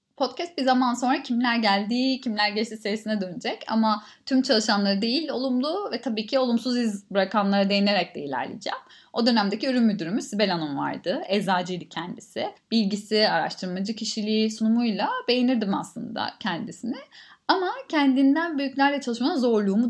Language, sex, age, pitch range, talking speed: Turkish, female, 10-29, 195-255 Hz, 135 wpm